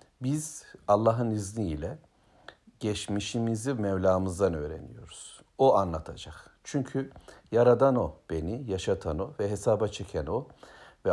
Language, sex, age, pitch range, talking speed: Turkish, male, 60-79, 90-115 Hz, 100 wpm